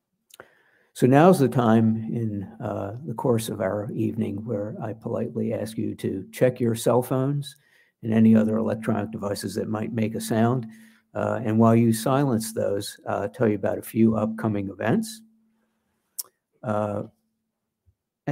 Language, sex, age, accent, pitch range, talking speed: English, male, 60-79, American, 110-125 Hz, 155 wpm